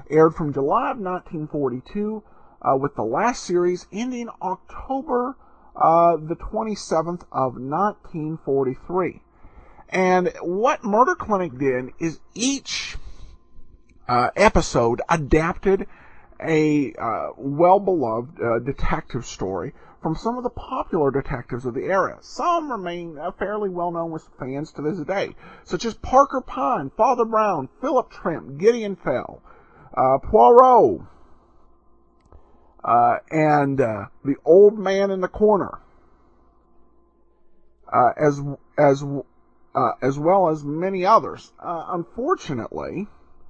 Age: 50-69